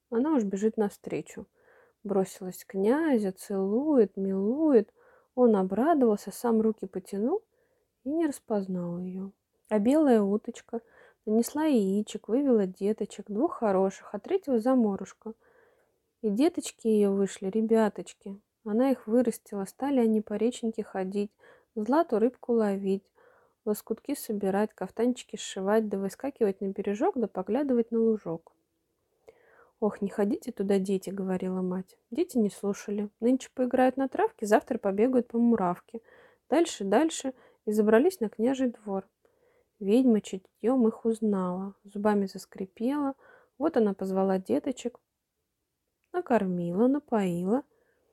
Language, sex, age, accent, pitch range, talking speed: Russian, female, 20-39, native, 200-265 Hz, 120 wpm